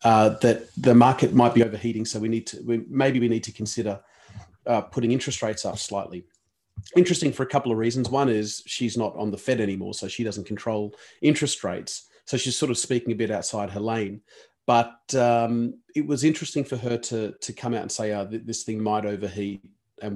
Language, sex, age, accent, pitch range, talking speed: English, male, 30-49, Australian, 105-130 Hz, 215 wpm